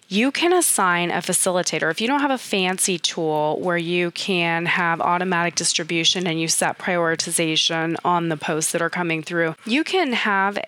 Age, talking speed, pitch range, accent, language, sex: 20-39, 180 wpm, 160-190 Hz, American, English, female